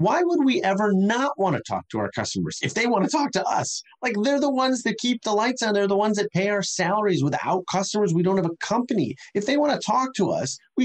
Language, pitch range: English, 145-205 Hz